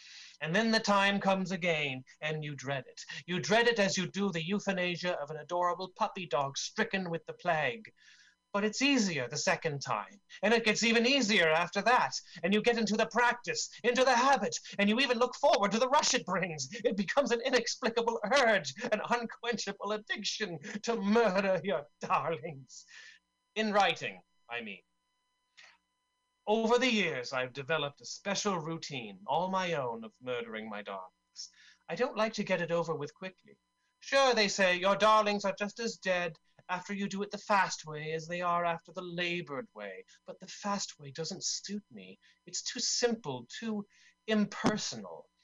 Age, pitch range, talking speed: 30-49, 165-225 Hz, 175 wpm